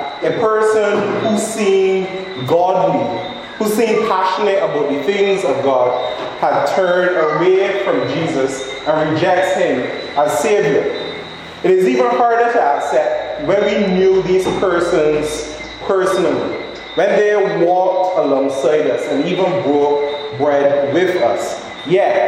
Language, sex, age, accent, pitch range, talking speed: English, male, 30-49, American, 155-215 Hz, 125 wpm